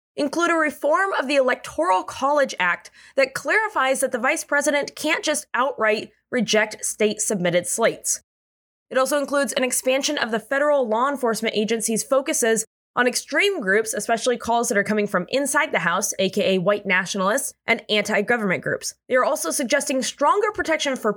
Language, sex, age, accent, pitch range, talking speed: English, female, 20-39, American, 205-285 Hz, 165 wpm